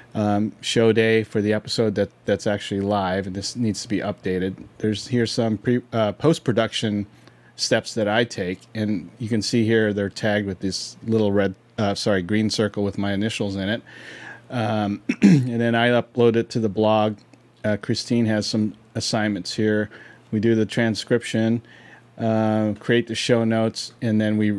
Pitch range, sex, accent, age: 105-120 Hz, male, American, 30-49